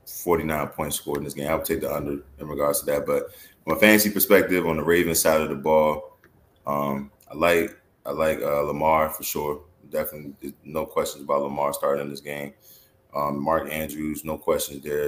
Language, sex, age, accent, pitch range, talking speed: English, male, 20-39, American, 70-85 Hz, 205 wpm